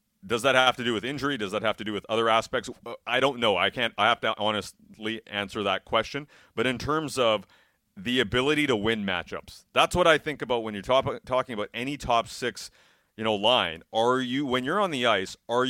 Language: English